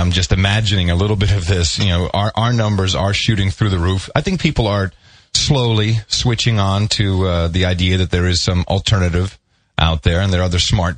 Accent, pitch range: American, 90-115 Hz